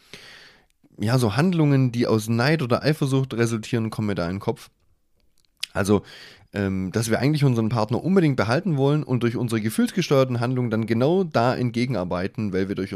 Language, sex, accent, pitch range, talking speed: German, male, German, 110-140 Hz, 170 wpm